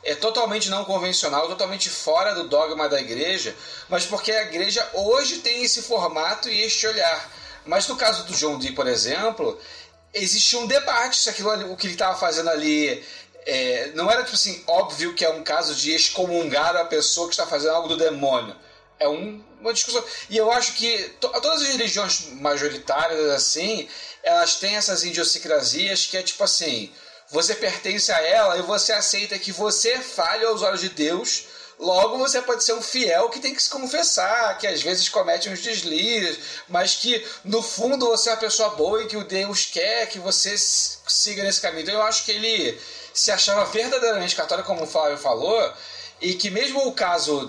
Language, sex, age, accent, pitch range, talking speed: Portuguese, male, 40-59, Brazilian, 175-235 Hz, 190 wpm